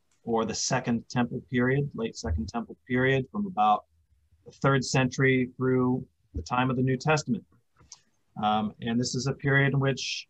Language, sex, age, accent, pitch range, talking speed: English, male, 40-59, American, 120-145 Hz, 170 wpm